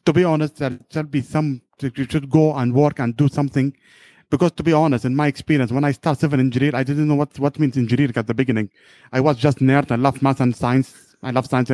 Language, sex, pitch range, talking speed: English, male, 130-155 Hz, 250 wpm